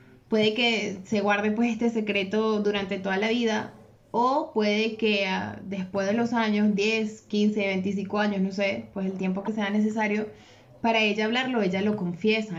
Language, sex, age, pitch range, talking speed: Spanish, female, 20-39, 190-225 Hz, 170 wpm